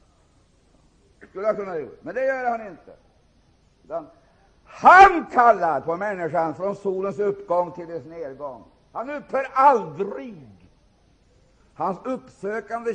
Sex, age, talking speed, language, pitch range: male, 60-79, 100 wpm, Swedish, 180-240 Hz